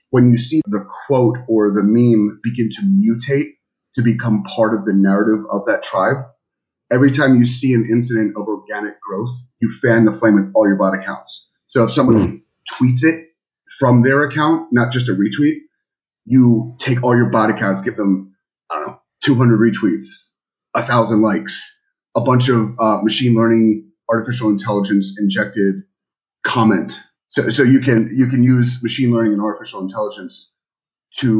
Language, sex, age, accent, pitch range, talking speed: English, male, 30-49, American, 105-130 Hz, 170 wpm